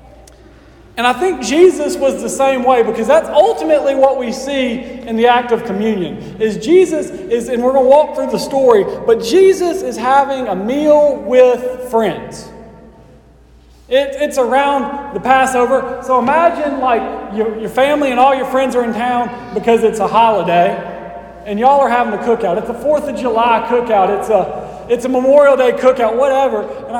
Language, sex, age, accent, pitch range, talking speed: English, male, 40-59, American, 205-265 Hz, 180 wpm